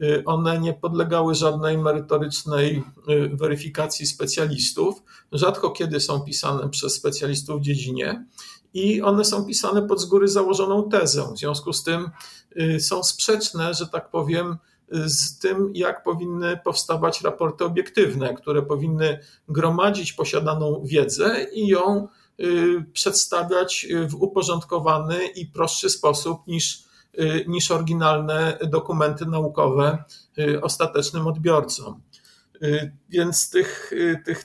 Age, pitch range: 50-69, 150-180 Hz